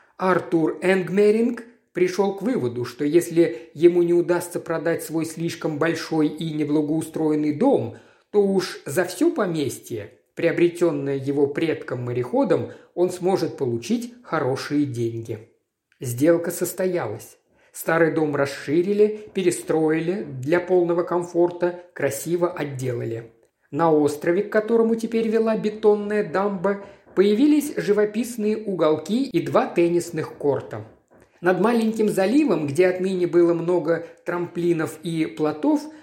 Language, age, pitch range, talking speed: Russian, 50-69, 160-210 Hz, 110 wpm